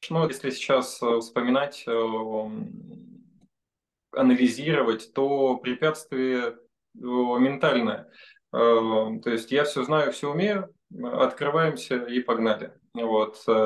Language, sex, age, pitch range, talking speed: Russian, male, 20-39, 115-150 Hz, 90 wpm